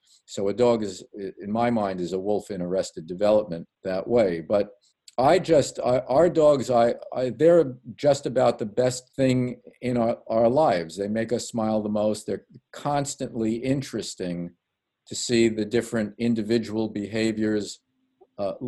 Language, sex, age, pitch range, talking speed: English, male, 50-69, 105-130 Hz, 155 wpm